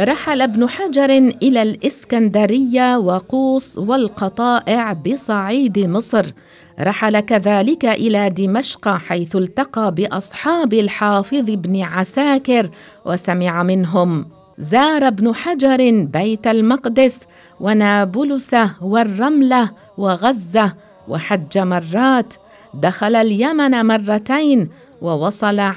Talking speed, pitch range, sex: 80 wpm, 190-245 Hz, female